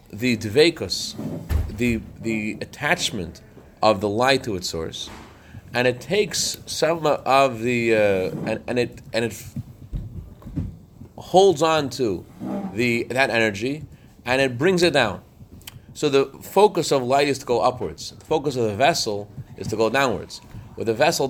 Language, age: English, 30-49